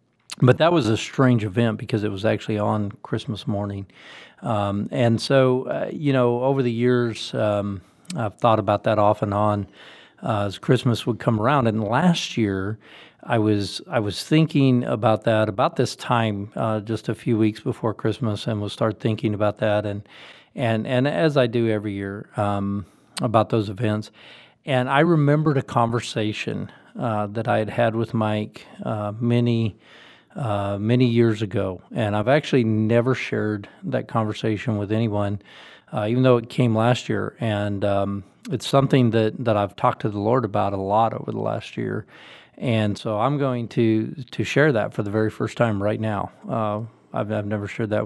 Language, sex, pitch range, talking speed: English, male, 105-120 Hz, 185 wpm